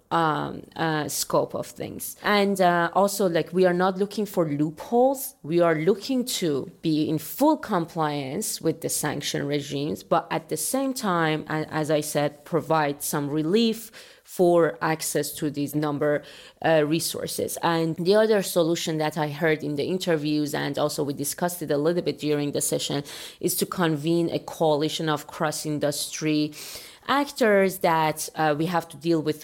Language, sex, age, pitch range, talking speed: English, female, 30-49, 150-180 Hz, 165 wpm